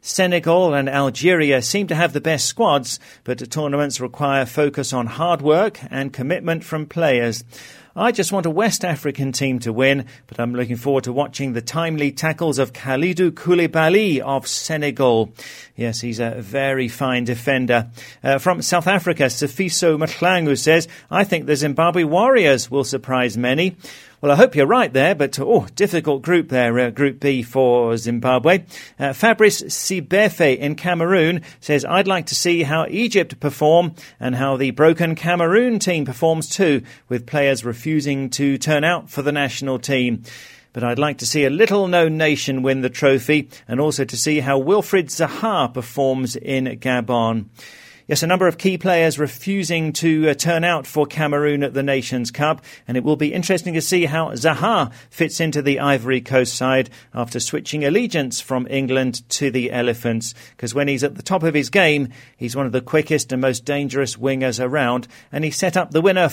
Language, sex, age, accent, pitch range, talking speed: English, male, 40-59, British, 130-165 Hz, 180 wpm